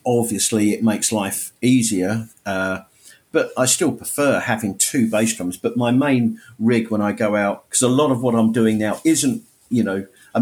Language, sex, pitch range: English, male, 100-120 Hz